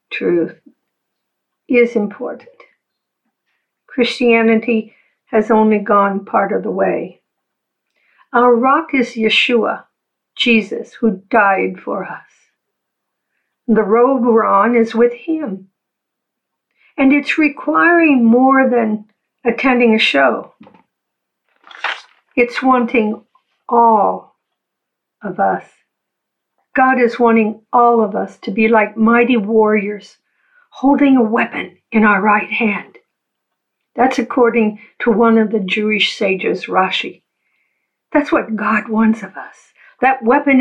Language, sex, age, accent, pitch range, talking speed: English, female, 50-69, American, 220-250 Hz, 110 wpm